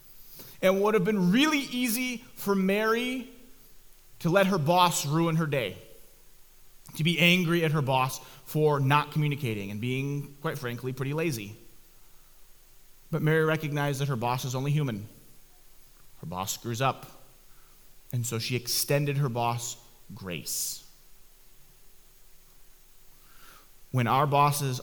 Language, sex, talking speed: English, male, 130 wpm